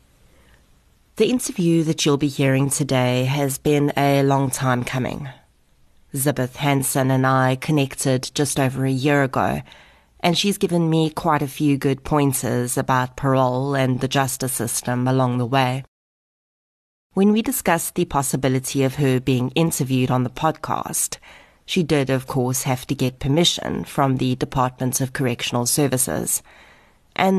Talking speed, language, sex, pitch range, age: 150 wpm, English, female, 125-145 Hz, 30-49